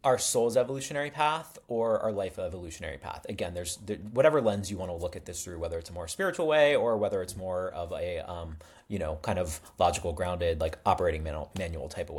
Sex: male